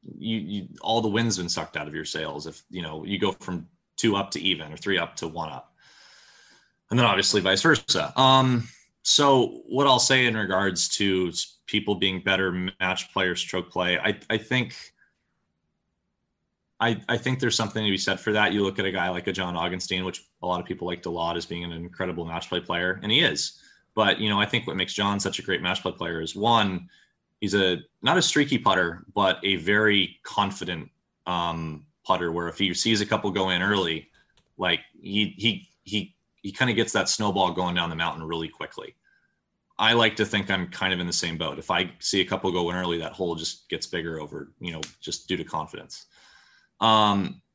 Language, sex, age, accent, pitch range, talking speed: English, male, 20-39, American, 90-105 Hz, 215 wpm